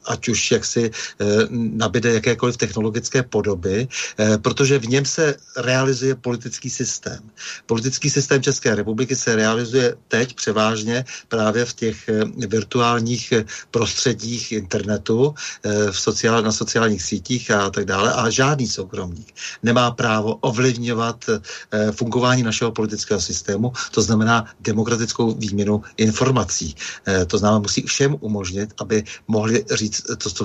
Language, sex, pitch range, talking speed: Czech, male, 105-120 Hz, 120 wpm